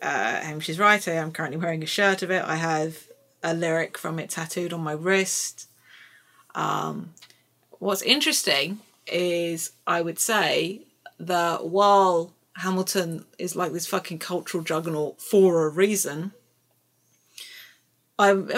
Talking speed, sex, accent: 130 wpm, female, British